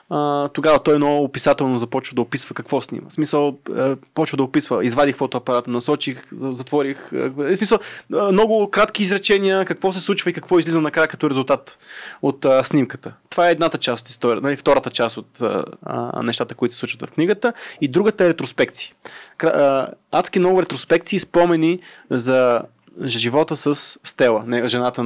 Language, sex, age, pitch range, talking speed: Bulgarian, male, 20-39, 125-155 Hz, 155 wpm